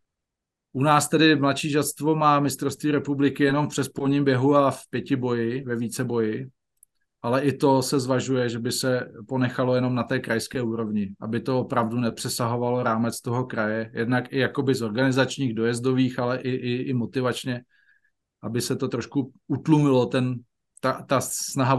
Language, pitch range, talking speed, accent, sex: Czech, 120-140 Hz, 165 wpm, native, male